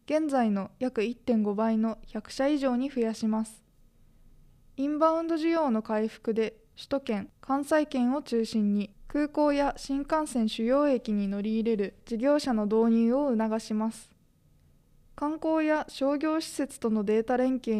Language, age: Japanese, 20-39